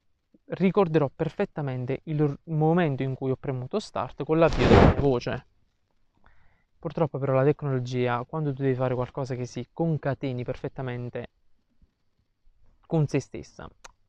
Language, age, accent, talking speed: Italian, 20-39, native, 125 wpm